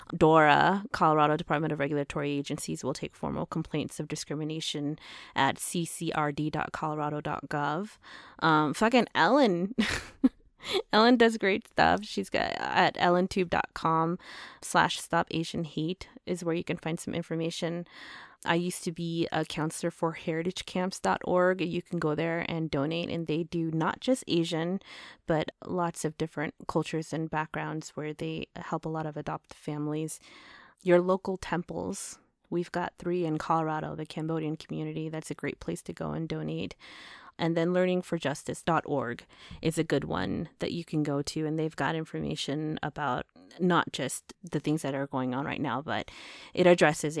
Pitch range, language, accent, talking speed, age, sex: 150-175 Hz, English, American, 150 wpm, 20-39, female